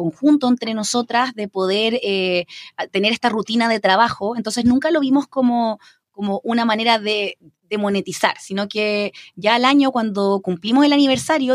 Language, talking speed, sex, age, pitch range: Spanish, 160 wpm, female, 20-39, 180-235 Hz